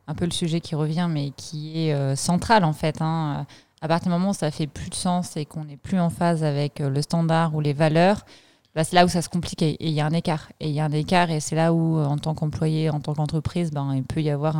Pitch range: 155-185 Hz